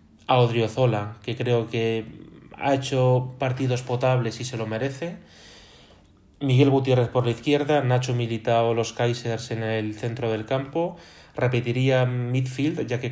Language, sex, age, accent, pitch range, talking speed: Spanish, male, 20-39, Spanish, 115-130 Hz, 140 wpm